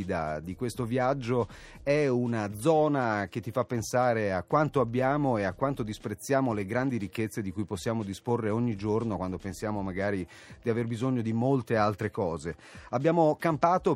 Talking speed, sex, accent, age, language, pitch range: 165 wpm, male, native, 30-49, Italian, 105-130 Hz